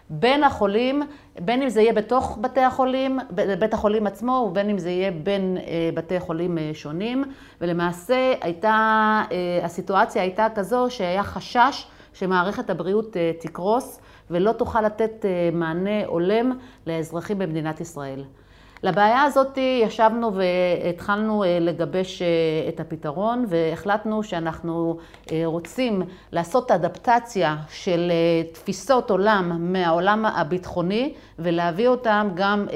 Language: Hebrew